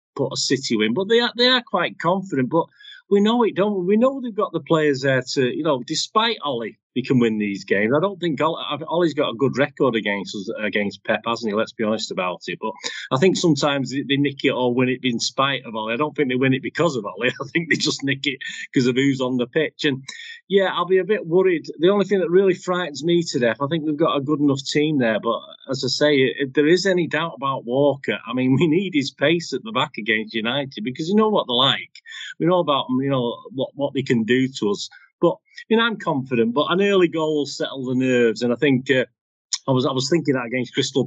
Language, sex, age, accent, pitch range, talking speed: English, male, 40-59, British, 125-170 Hz, 260 wpm